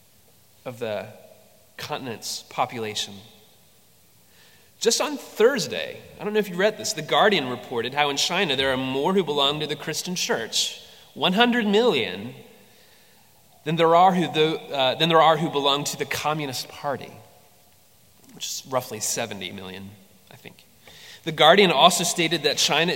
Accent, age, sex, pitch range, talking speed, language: American, 30-49, male, 115-165 Hz, 150 wpm, English